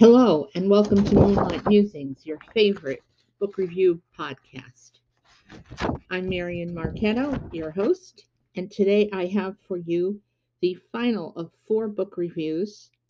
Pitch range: 155-205 Hz